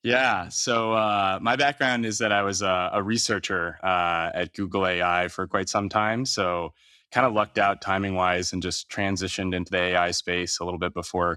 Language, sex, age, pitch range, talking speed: English, male, 20-39, 85-100 Hz, 200 wpm